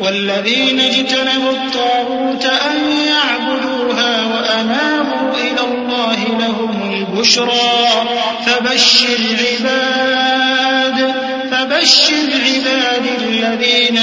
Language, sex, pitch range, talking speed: English, male, 230-265 Hz, 55 wpm